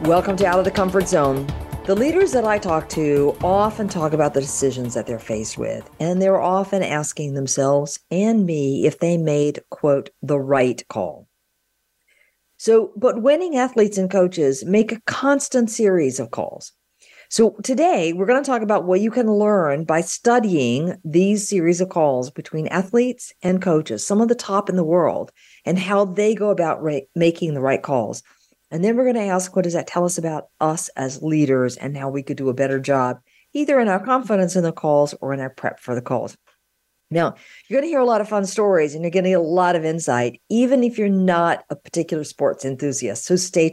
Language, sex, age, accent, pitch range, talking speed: English, female, 50-69, American, 150-205 Hz, 205 wpm